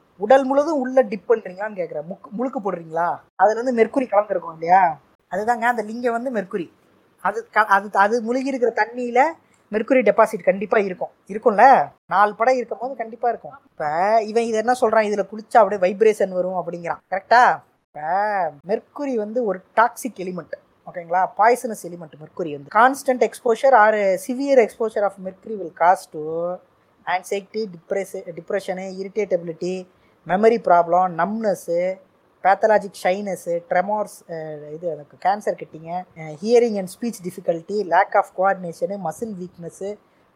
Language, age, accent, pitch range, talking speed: Tamil, 20-39, native, 180-220 Hz, 115 wpm